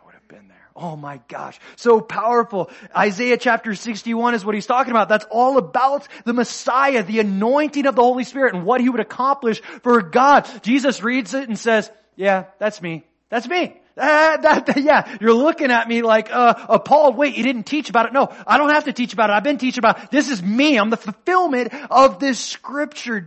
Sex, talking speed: male, 205 wpm